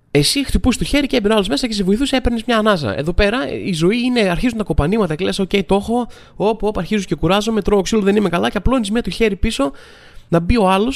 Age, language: 20-39, Greek